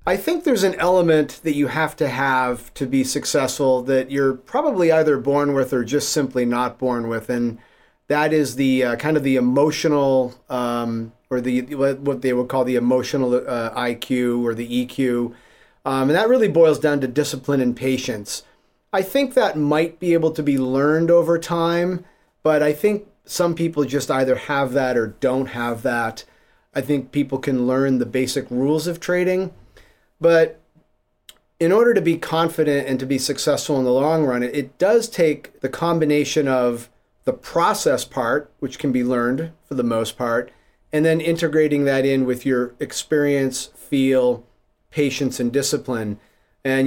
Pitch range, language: 125-155 Hz, English